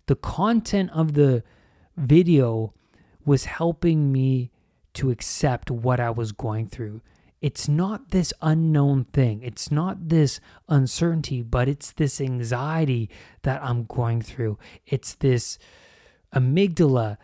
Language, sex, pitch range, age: English, male, 110-160 Hz, 30-49